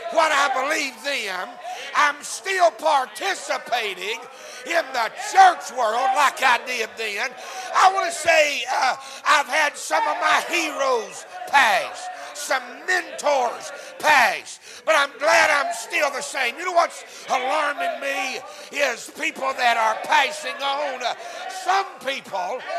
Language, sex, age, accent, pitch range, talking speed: English, male, 60-79, American, 295-365 Hz, 130 wpm